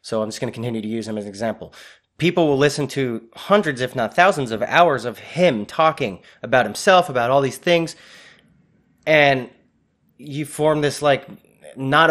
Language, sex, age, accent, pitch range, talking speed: English, male, 20-39, American, 115-145 Hz, 185 wpm